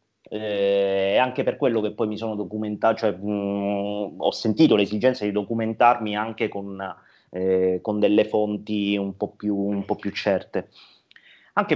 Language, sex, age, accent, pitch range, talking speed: Italian, male, 30-49, native, 105-125 Hz, 155 wpm